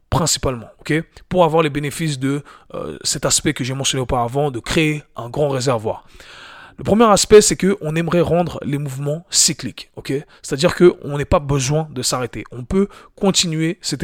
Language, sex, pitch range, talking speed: French, male, 130-165 Hz, 185 wpm